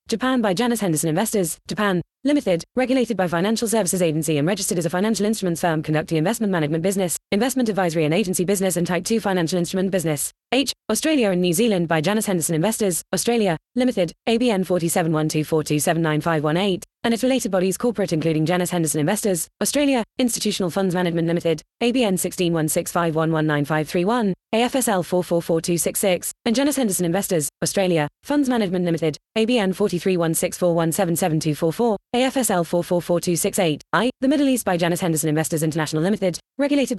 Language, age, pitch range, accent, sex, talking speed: English, 20-39, 170-220 Hz, British, female, 145 wpm